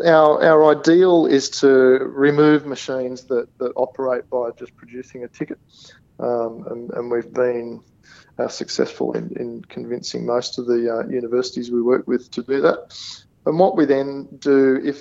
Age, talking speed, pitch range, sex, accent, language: 40-59, 170 wpm, 120-135 Hz, male, Australian, English